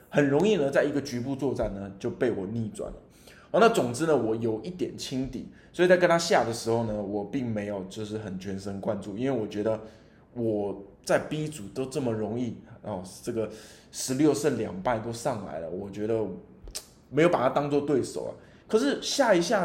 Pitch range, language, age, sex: 105-145 Hz, Chinese, 20-39, male